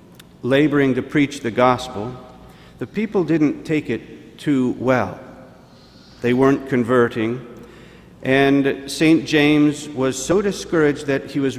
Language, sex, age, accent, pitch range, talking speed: English, male, 50-69, American, 120-150 Hz, 125 wpm